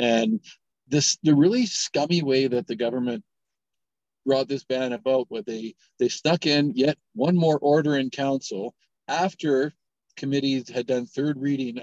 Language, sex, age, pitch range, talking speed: English, male, 50-69, 120-145 Hz, 150 wpm